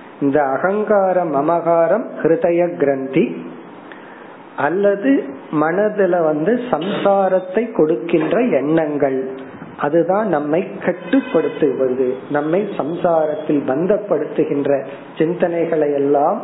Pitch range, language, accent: 145-185 Hz, Tamil, native